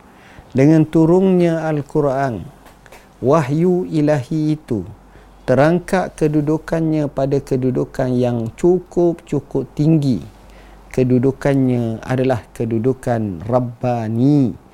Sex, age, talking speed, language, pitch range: male, 50-69, 70 wpm, Indonesian, 120-150 Hz